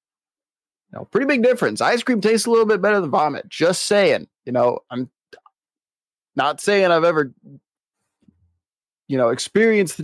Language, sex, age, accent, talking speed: English, male, 20-39, American, 150 wpm